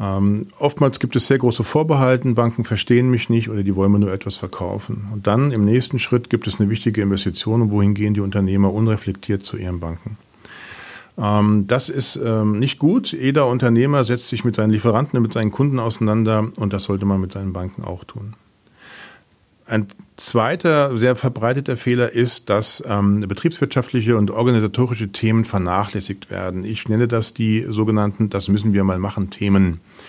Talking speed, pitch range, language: 180 wpm, 105-120 Hz, German